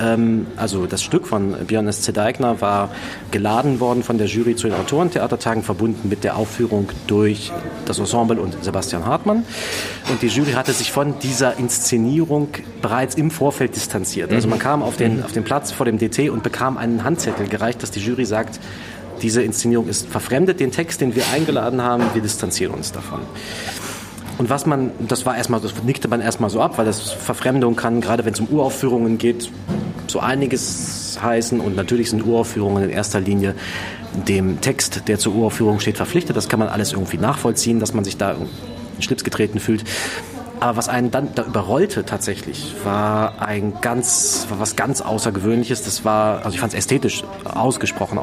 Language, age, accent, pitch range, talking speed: German, 30-49, German, 105-125 Hz, 180 wpm